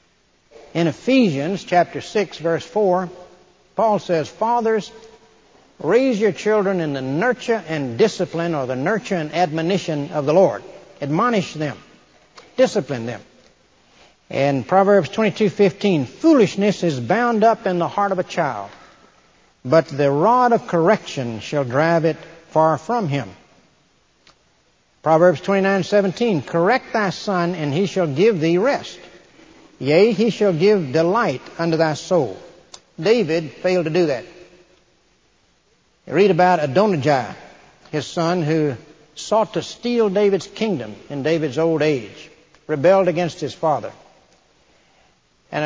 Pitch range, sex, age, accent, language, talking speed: 155-200 Hz, male, 60-79, American, English, 125 wpm